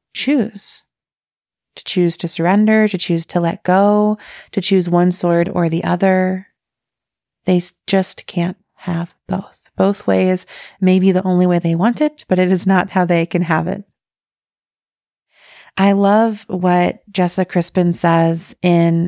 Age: 30-49